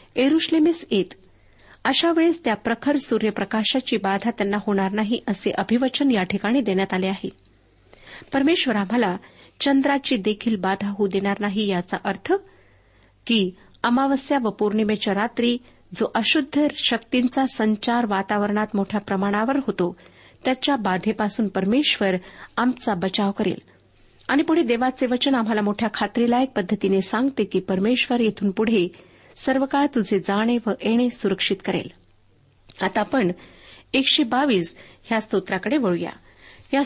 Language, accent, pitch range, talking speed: Marathi, native, 195-265 Hz, 120 wpm